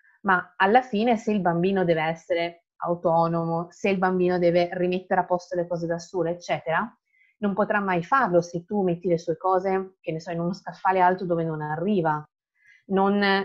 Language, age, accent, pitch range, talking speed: Italian, 30-49, native, 165-205 Hz, 185 wpm